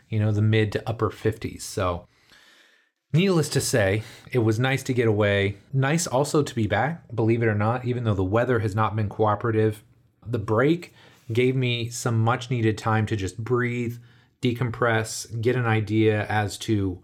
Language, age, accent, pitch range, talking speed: English, 30-49, American, 110-125 Hz, 180 wpm